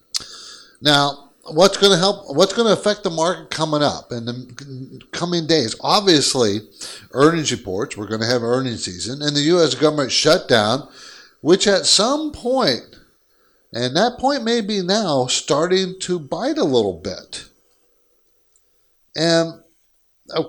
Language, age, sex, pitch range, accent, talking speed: English, 50-69, male, 130-185 Hz, American, 135 wpm